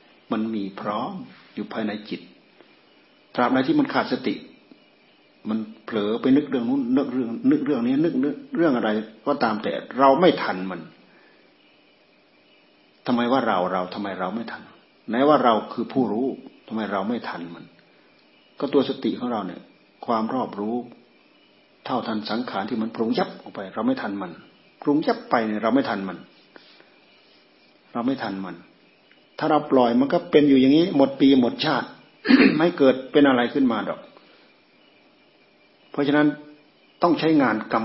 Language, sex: Thai, male